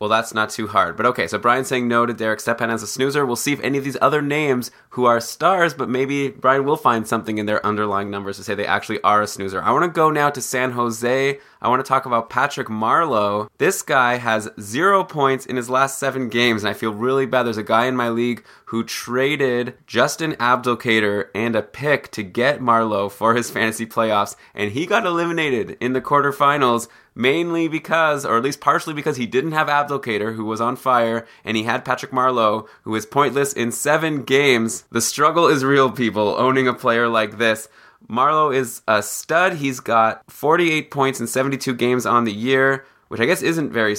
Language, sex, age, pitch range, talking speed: English, male, 20-39, 110-135 Hz, 215 wpm